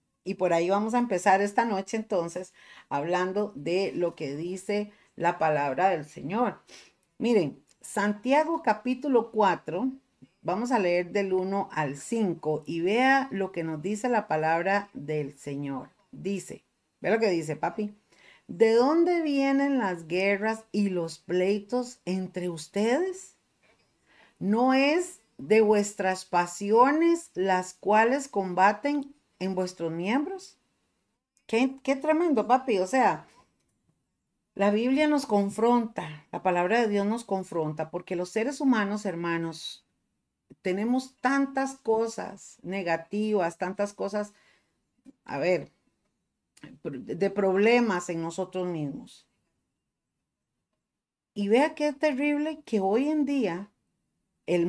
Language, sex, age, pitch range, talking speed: Spanish, female, 40-59, 180-250 Hz, 120 wpm